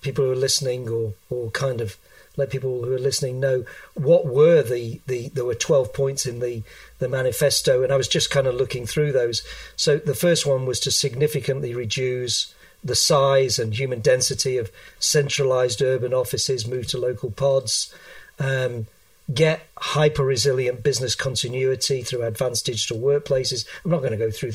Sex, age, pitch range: male, 50-69, 125-145 Hz